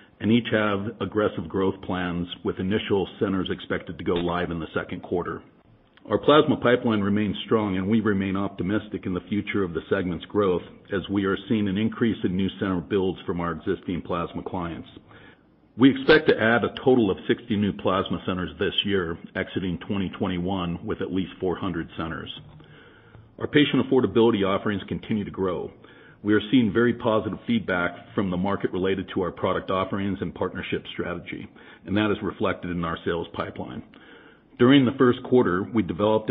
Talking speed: 175 wpm